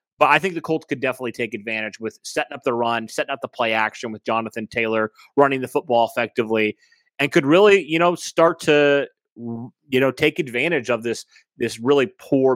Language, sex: English, male